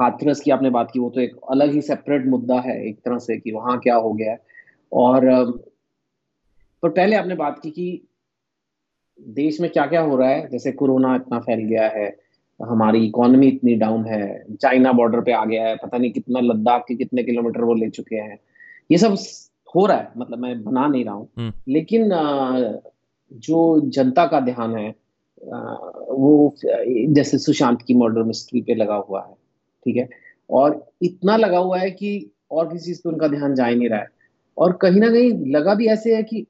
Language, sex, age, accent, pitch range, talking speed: Hindi, male, 30-49, native, 120-185 Hz, 195 wpm